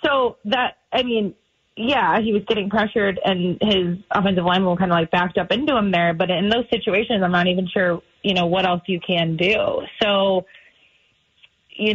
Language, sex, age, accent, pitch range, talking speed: English, female, 20-39, American, 180-215 Hz, 195 wpm